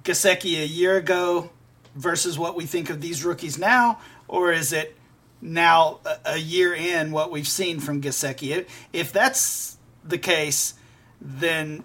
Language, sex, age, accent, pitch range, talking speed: English, male, 40-59, American, 140-170 Hz, 145 wpm